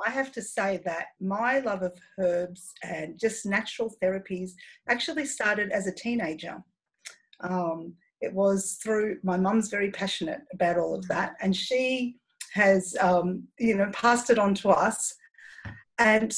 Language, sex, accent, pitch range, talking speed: English, female, Australian, 185-240 Hz, 155 wpm